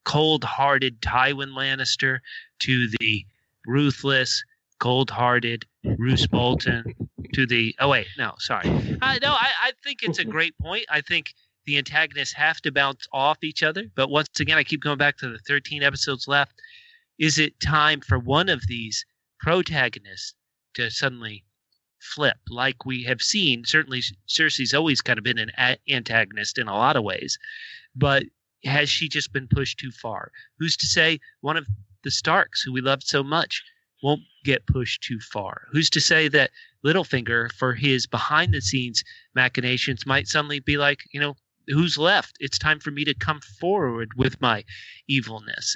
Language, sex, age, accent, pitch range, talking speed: English, male, 30-49, American, 125-155 Hz, 165 wpm